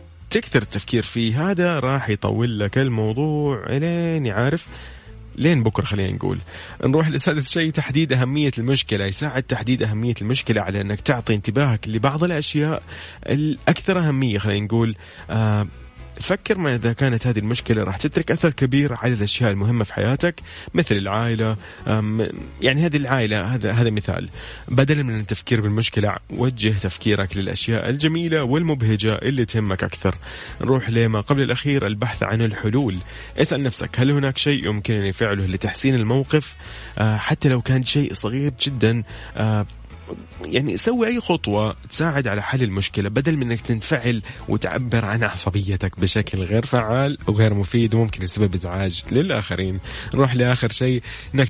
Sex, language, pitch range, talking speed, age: male, English, 105-135 Hz, 140 wpm, 30-49